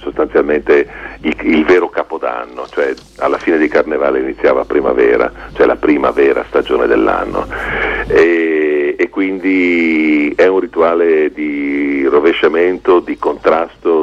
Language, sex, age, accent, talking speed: Italian, male, 50-69, native, 110 wpm